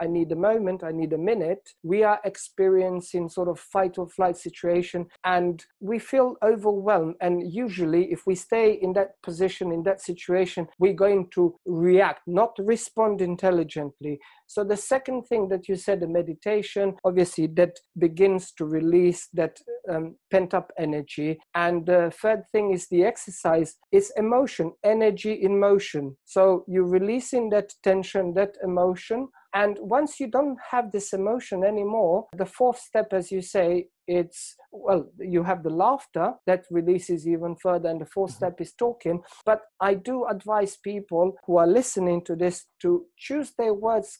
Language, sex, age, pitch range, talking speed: English, male, 50-69, 175-215 Hz, 165 wpm